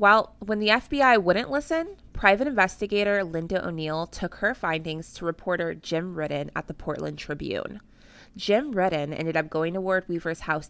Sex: female